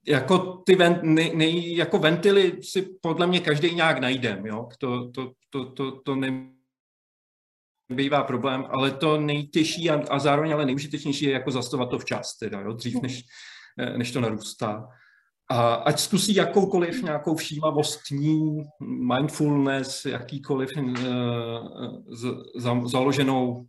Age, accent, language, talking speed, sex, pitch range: 40-59, native, Czech, 120 wpm, male, 120-150 Hz